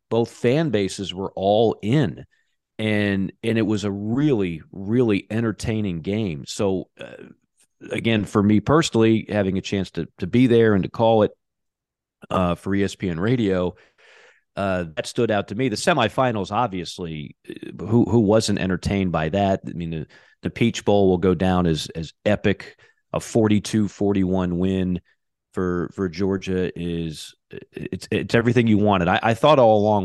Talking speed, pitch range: 160 wpm, 90-110 Hz